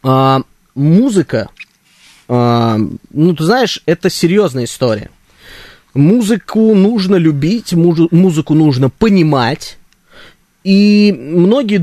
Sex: male